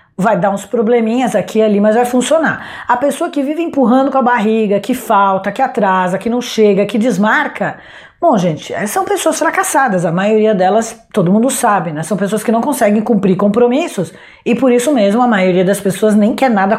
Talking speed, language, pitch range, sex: 205 wpm, Portuguese, 200-245 Hz, female